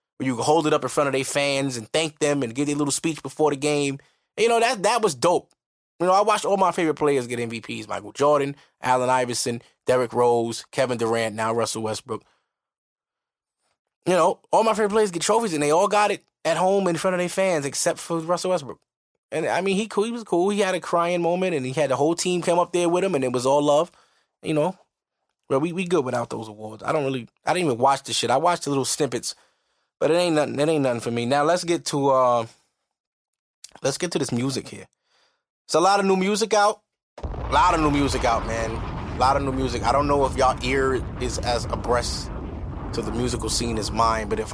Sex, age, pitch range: male, 20-39, 115-165 Hz